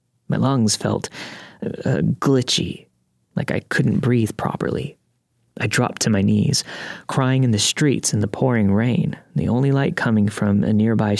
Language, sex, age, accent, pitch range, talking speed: English, male, 30-49, American, 105-130 Hz, 160 wpm